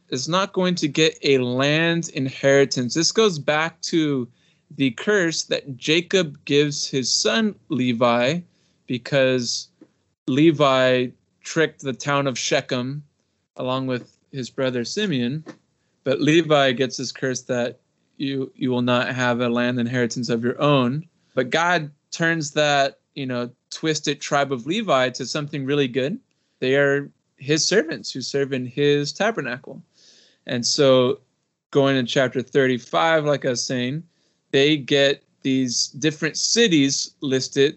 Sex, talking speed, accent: male, 140 wpm, American